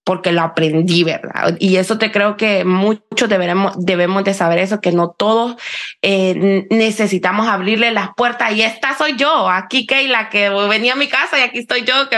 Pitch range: 190-240 Hz